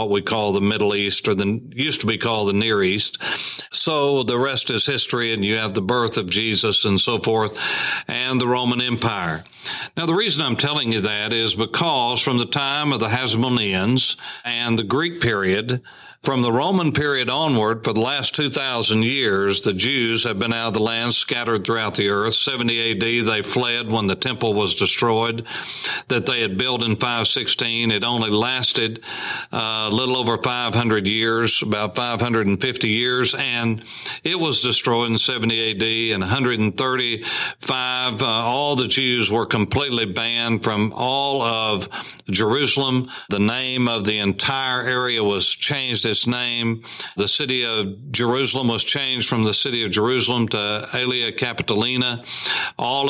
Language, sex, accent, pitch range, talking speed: English, male, American, 110-125 Hz, 165 wpm